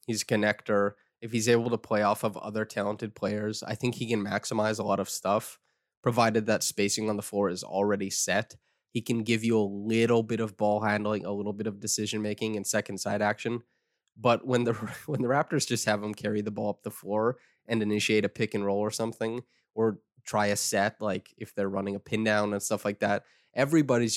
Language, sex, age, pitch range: English, male, 20-39, 105-120 Hz